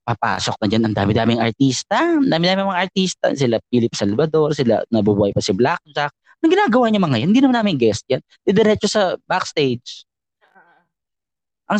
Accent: native